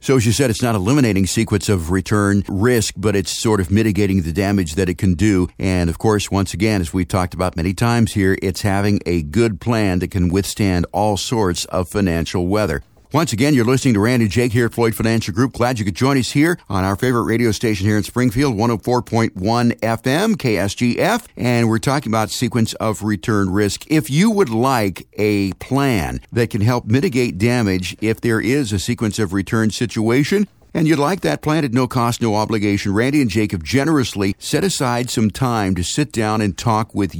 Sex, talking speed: male, 205 wpm